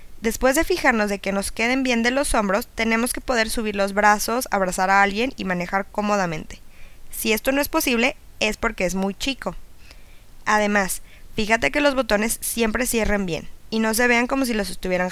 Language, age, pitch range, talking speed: Spanish, 20-39, 195-245 Hz, 195 wpm